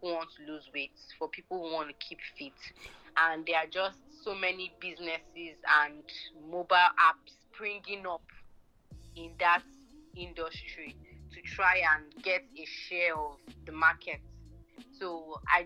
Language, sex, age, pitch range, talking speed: English, female, 20-39, 165-225 Hz, 145 wpm